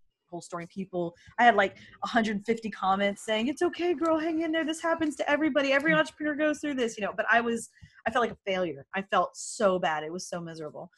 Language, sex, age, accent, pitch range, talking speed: English, female, 20-39, American, 185-235 Hz, 230 wpm